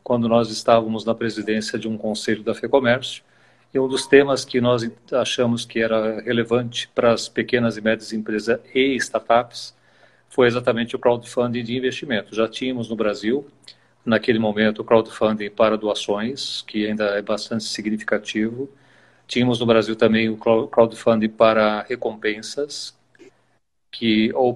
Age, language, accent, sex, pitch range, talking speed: 40-59, Portuguese, Brazilian, male, 115-135 Hz, 145 wpm